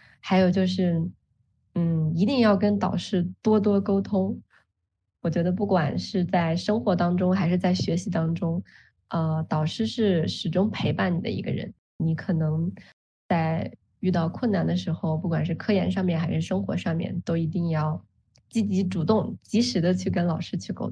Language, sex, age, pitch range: Chinese, female, 20-39, 170-200 Hz